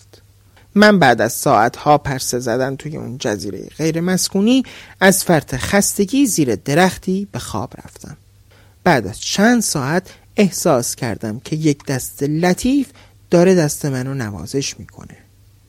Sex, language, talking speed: male, Persian, 125 wpm